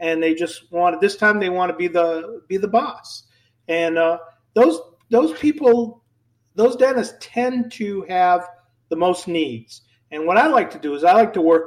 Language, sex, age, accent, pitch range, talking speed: English, male, 50-69, American, 145-185 Hz, 195 wpm